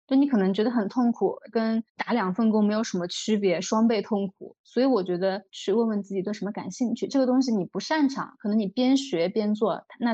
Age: 20-39